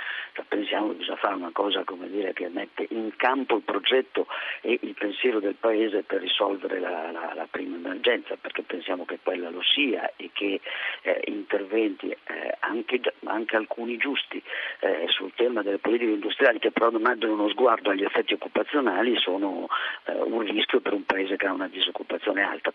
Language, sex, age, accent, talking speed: Italian, male, 50-69, native, 180 wpm